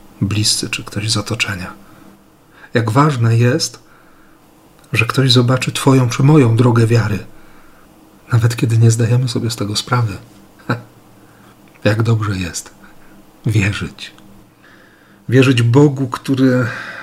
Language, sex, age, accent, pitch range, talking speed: Polish, male, 50-69, native, 105-125 Hz, 110 wpm